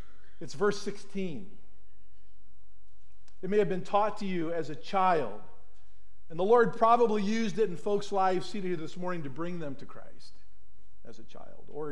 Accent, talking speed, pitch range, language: American, 175 wpm, 135-205 Hz, English